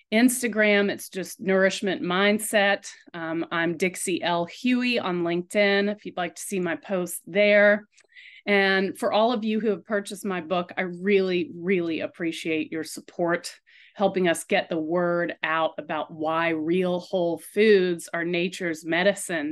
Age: 30-49